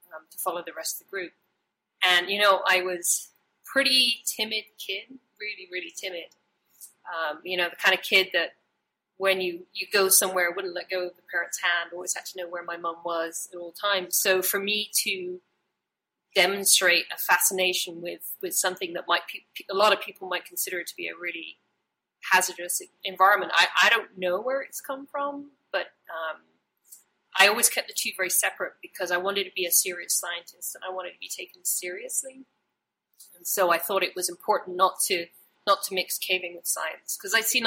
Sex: female